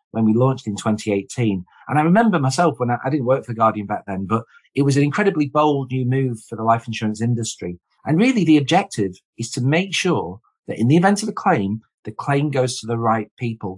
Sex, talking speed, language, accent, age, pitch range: male, 230 wpm, English, British, 40-59, 110-145 Hz